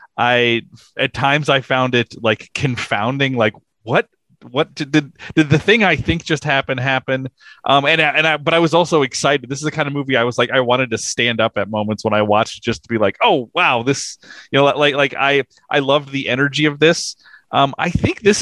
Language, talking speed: English, 235 wpm